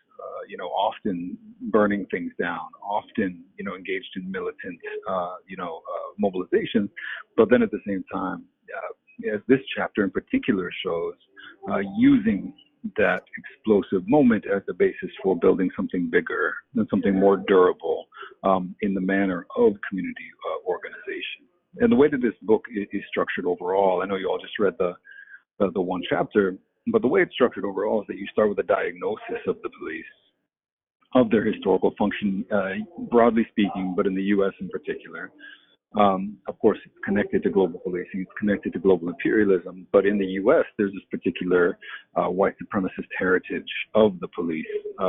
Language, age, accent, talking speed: English, 50-69, American, 175 wpm